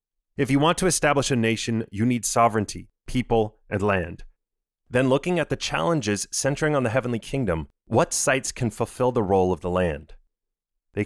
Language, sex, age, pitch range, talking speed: English, male, 30-49, 110-145 Hz, 180 wpm